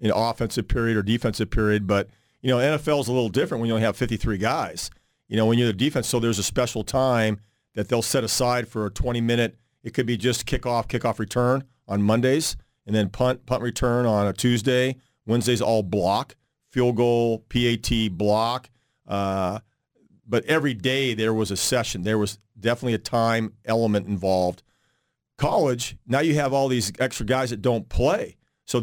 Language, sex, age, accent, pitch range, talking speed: English, male, 40-59, American, 110-135 Hz, 185 wpm